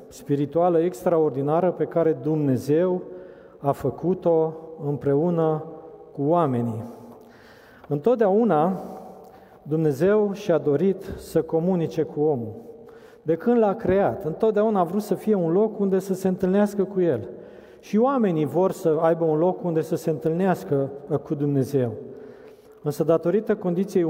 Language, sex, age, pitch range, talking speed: Romanian, male, 40-59, 150-180 Hz, 125 wpm